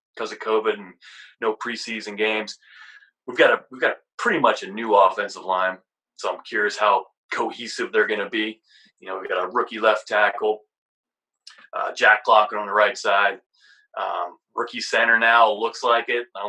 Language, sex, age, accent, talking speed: English, male, 30-49, American, 185 wpm